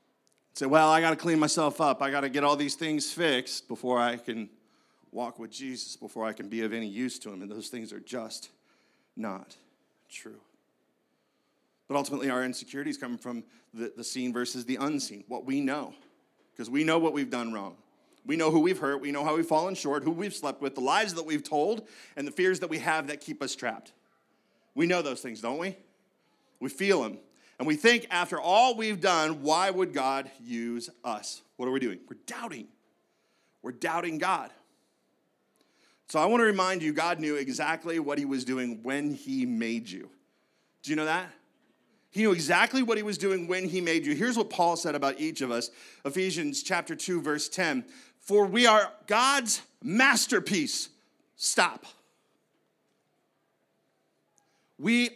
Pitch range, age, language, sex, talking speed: 135-195 Hz, 40-59, English, male, 185 wpm